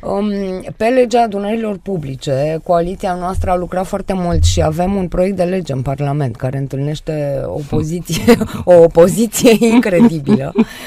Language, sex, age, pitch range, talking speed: Romanian, female, 20-39, 155-195 Hz, 140 wpm